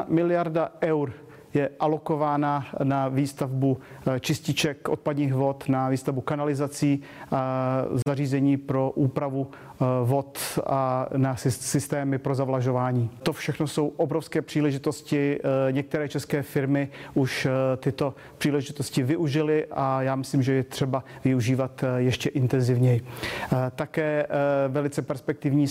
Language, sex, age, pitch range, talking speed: Czech, male, 40-59, 135-150 Hz, 105 wpm